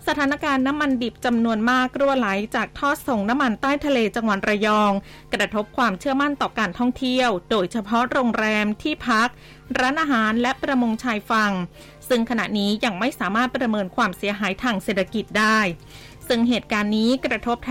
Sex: female